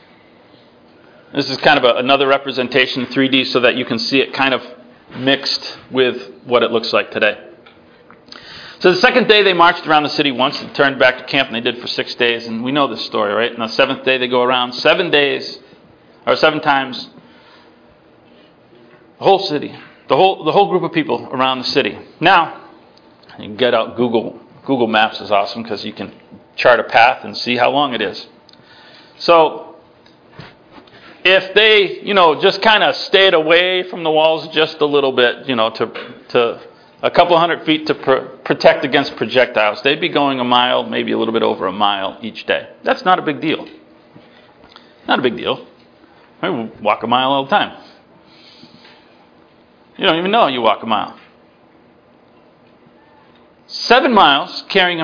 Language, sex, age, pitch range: English, male, 40-59, 125-170 Hz